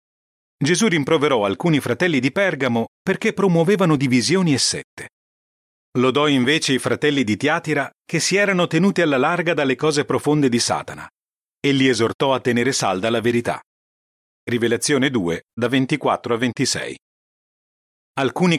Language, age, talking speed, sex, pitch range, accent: Italian, 40-59, 135 wpm, male, 115-160 Hz, native